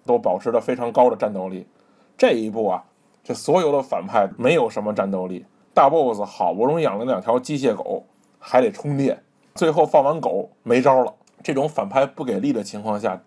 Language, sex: Chinese, male